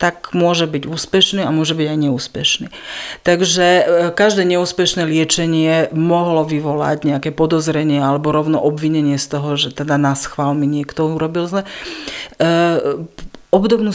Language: Slovak